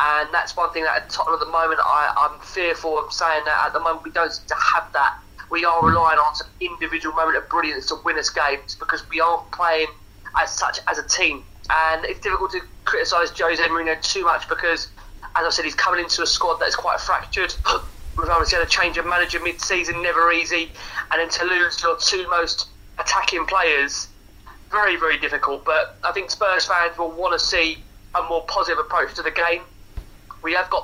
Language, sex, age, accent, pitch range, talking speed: English, male, 20-39, British, 160-175 Hz, 210 wpm